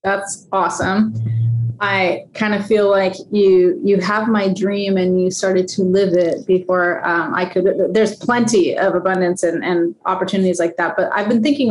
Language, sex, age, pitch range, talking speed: English, female, 30-49, 185-220 Hz, 180 wpm